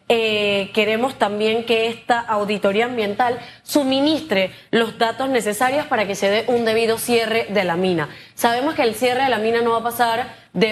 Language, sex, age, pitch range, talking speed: Spanish, female, 20-39, 215-245 Hz, 185 wpm